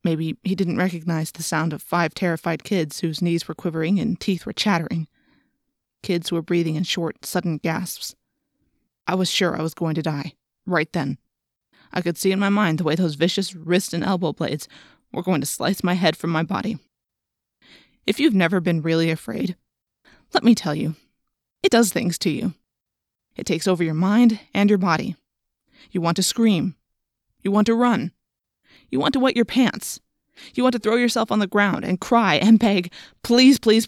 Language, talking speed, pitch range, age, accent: English, 195 wpm, 170-215 Hz, 20-39, American